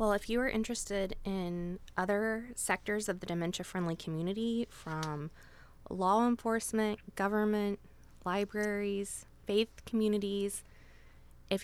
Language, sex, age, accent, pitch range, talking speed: English, female, 20-39, American, 170-210 Hz, 110 wpm